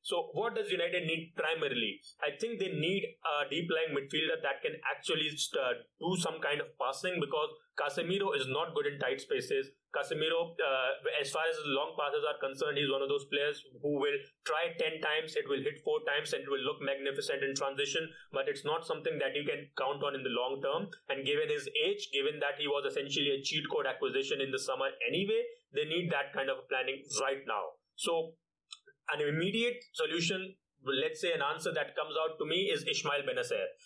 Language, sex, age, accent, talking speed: English, male, 30-49, Indian, 205 wpm